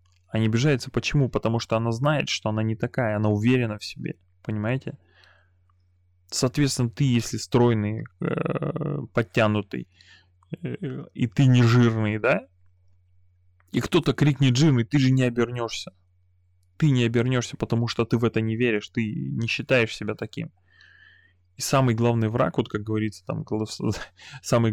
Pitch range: 100-125 Hz